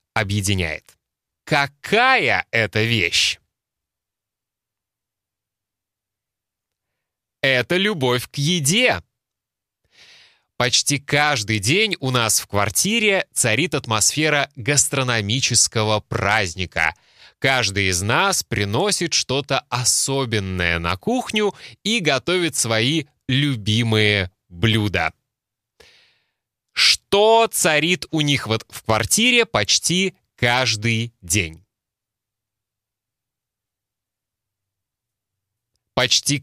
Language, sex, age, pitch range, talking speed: Russian, male, 20-39, 105-140 Hz, 70 wpm